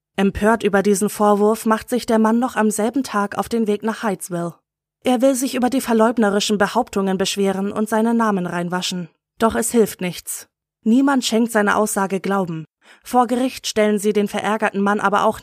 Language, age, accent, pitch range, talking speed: German, 20-39, German, 195-230 Hz, 185 wpm